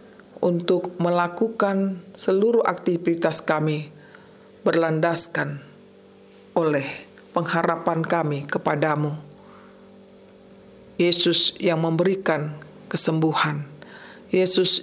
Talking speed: 60 wpm